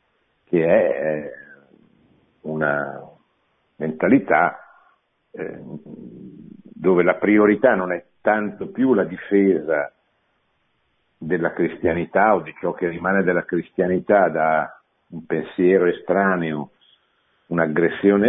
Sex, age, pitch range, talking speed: male, 60-79, 85-110 Hz, 90 wpm